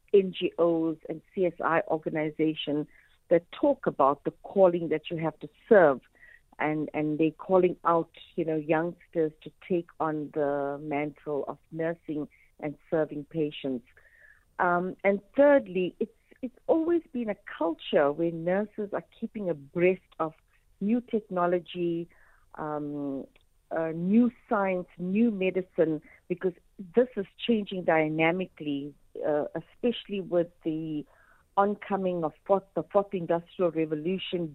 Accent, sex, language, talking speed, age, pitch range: Indian, female, English, 120 wpm, 50-69, 160-195 Hz